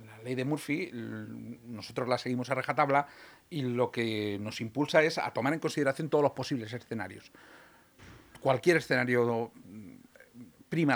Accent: Spanish